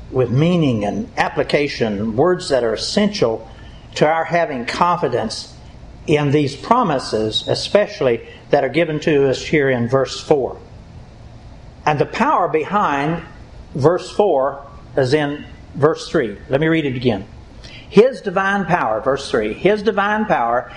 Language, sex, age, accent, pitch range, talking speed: English, male, 60-79, American, 130-170 Hz, 140 wpm